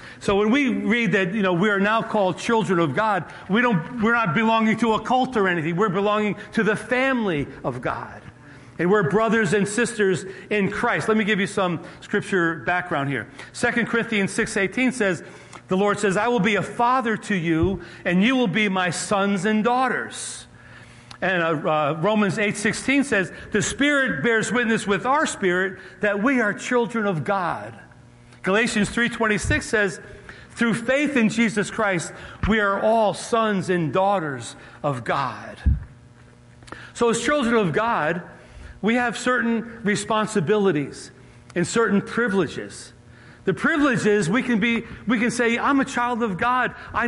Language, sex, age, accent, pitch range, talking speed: English, male, 40-59, American, 180-235 Hz, 165 wpm